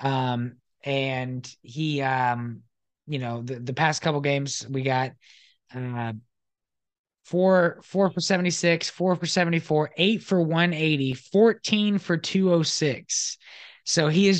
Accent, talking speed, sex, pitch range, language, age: American, 125 wpm, male, 135-180 Hz, English, 20-39